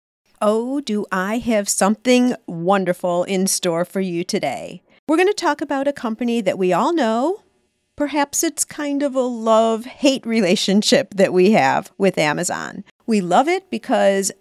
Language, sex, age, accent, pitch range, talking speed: English, female, 50-69, American, 190-270 Hz, 160 wpm